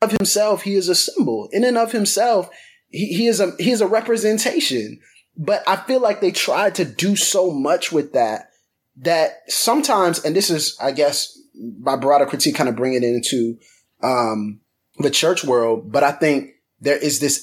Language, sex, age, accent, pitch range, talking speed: English, male, 20-39, American, 130-190 Hz, 190 wpm